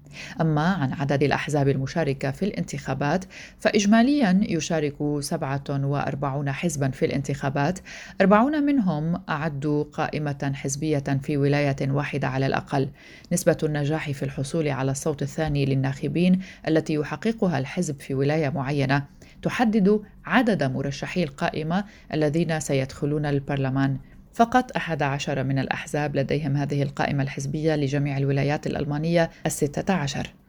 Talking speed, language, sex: 115 wpm, Arabic, female